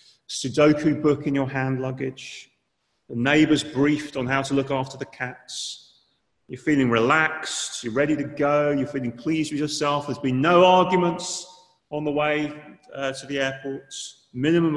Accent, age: British, 30-49